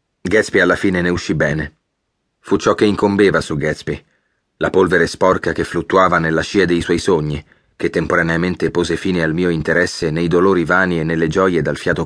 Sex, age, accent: male, 30-49, native